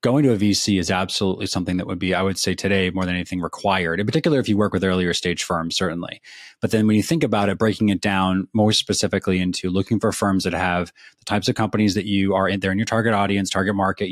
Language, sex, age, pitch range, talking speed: English, male, 20-39, 95-110 Hz, 260 wpm